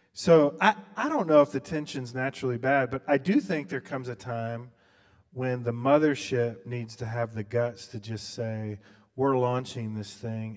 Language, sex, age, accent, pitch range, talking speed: English, male, 30-49, American, 100-125 Hz, 185 wpm